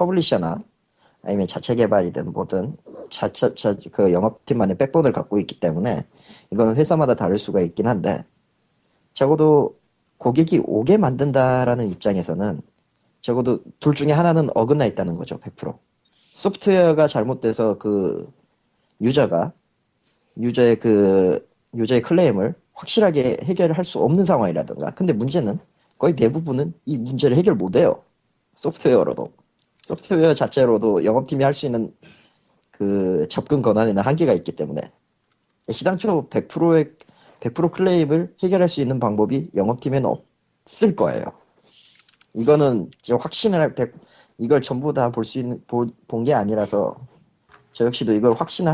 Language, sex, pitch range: Korean, male, 120-175 Hz